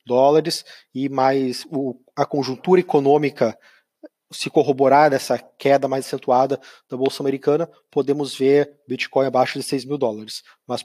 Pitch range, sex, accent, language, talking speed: 130-145 Hz, male, Brazilian, Portuguese, 135 wpm